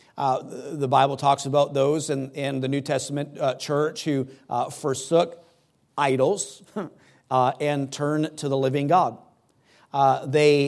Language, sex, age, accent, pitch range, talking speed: English, male, 50-69, American, 140-160 Hz, 145 wpm